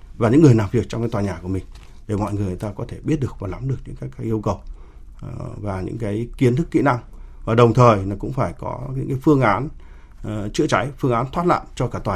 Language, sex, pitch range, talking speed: Vietnamese, male, 105-130 Hz, 275 wpm